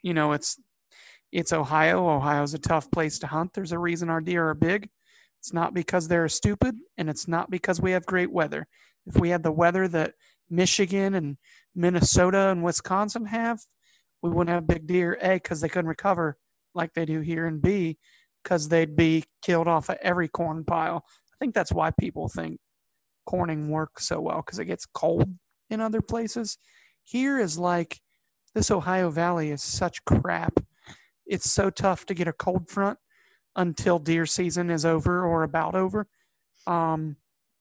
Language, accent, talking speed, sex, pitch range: English, American, 175 wpm, male, 155-185 Hz